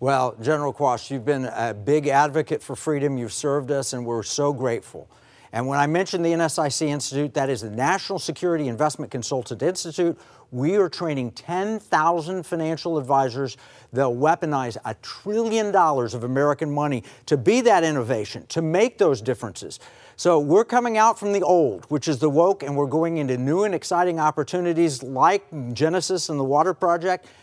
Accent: American